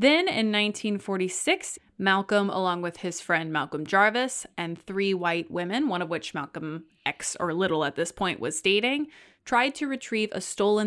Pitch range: 170-230 Hz